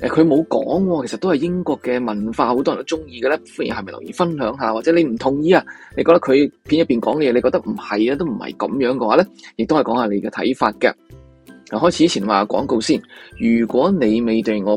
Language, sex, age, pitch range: Chinese, male, 20-39, 110-170 Hz